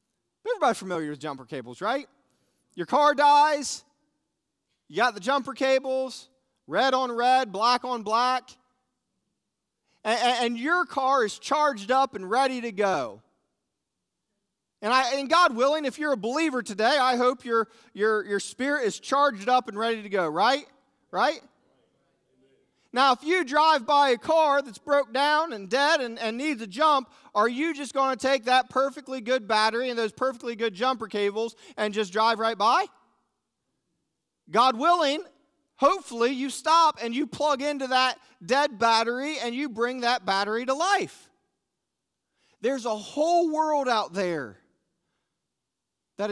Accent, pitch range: American, 225-290 Hz